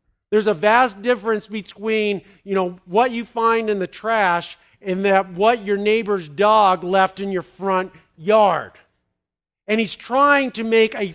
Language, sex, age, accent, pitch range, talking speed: English, male, 50-69, American, 195-235 Hz, 160 wpm